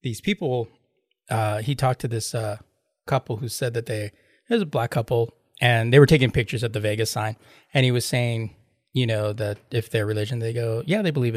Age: 20-39